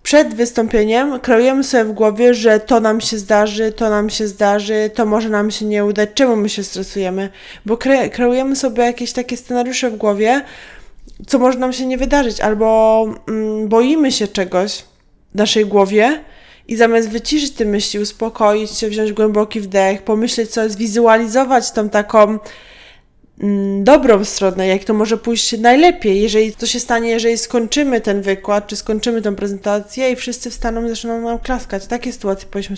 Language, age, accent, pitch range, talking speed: Polish, 20-39, native, 205-240 Hz, 165 wpm